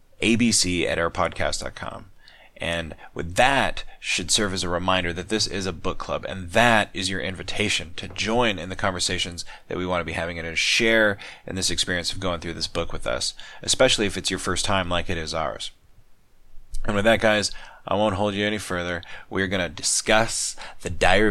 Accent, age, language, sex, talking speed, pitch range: American, 30-49, English, male, 205 wpm, 90-110 Hz